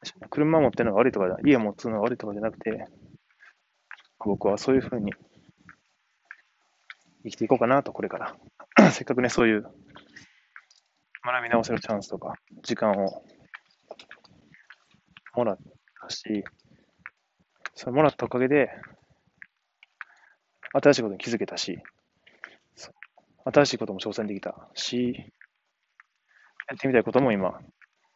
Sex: male